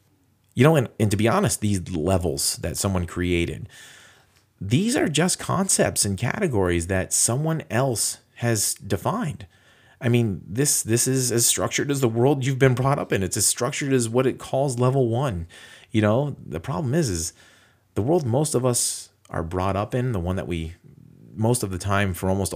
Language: English